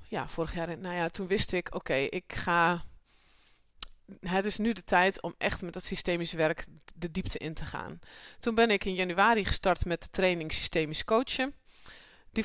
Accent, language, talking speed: Dutch, Dutch, 195 wpm